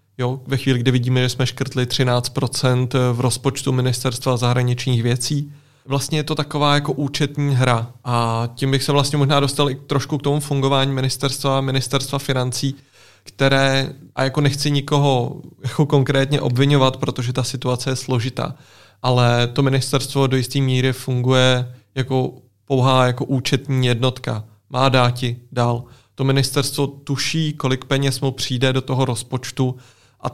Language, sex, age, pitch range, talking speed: Czech, male, 30-49, 125-140 Hz, 150 wpm